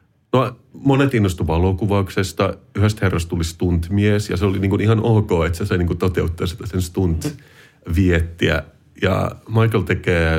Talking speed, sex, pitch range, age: 155 wpm, male, 90-110 Hz, 30-49